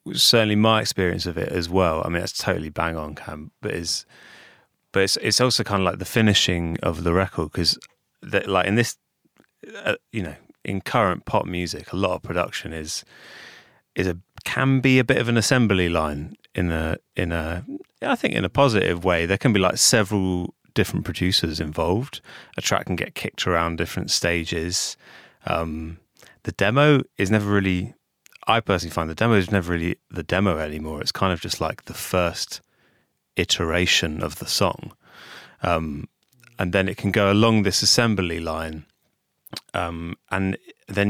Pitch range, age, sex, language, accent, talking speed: 85-100 Hz, 30-49, male, English, British, 175 wpm